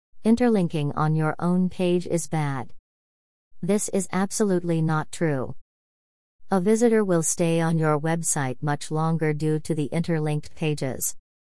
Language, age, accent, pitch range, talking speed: English, 40-59, American, 140-175 Hz, 135 wpm